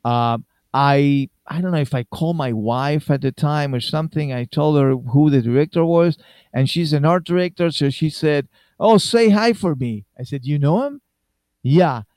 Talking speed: 200 wpm